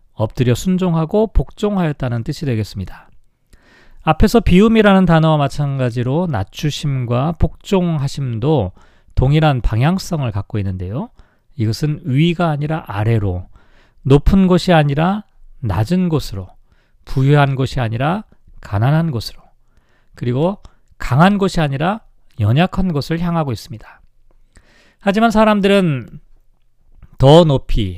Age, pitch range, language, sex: 40-59, 120-180 Hz, Korean, male